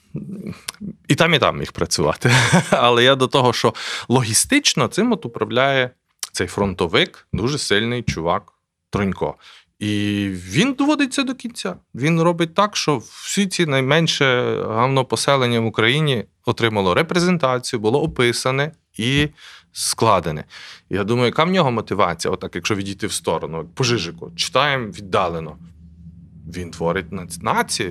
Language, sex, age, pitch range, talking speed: Ukrainian, male, 30-49, 110-165 Hz, 130 wpm